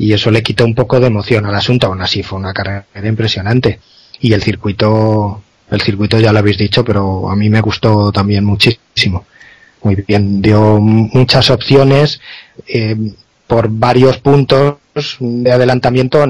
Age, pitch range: 20-39, 105-130 Hz